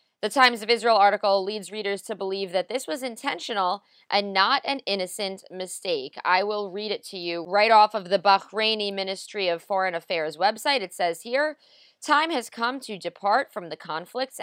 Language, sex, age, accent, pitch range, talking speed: English, female, 30-49, American, 185-235 Hz, 185 wpm